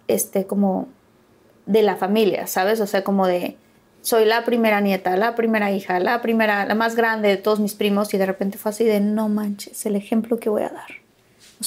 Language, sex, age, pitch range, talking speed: Spanish, female, 20-39, 200-235 Hz, 210 wpm